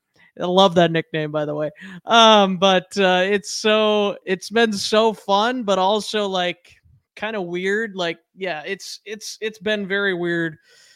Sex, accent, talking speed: male, American, 165 wpm